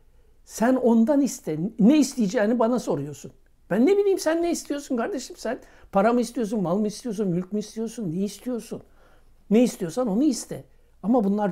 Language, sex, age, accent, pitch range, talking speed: Turkish, male, 60-79, native, 190-275 Hz, 170 wpm